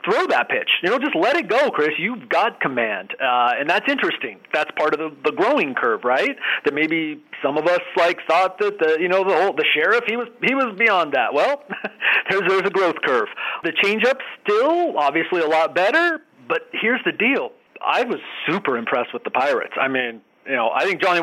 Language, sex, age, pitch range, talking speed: English, male, 40-59, 130-190 Hz, 220 wpm